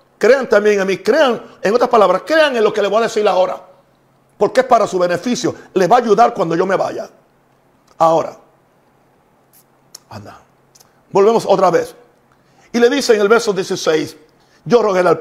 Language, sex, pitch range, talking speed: Spanish, male, 175-220 Hz, 180 wpm